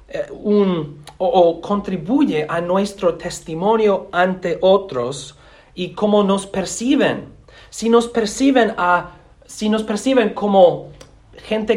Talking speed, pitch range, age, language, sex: 90 wpm, 140-190 Hz, 40-59, English, male